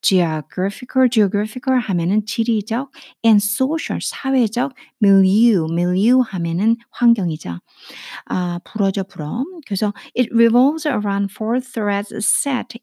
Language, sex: Korean, female